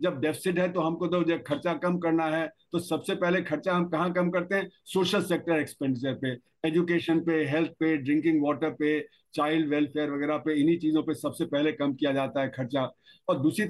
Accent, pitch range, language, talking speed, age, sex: native, 155-180 Hz, Hindi, 205 wpm, 50-69, male